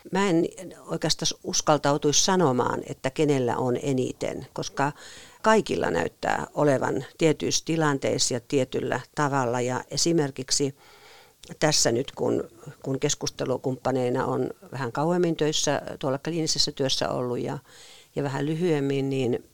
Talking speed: 110 wpm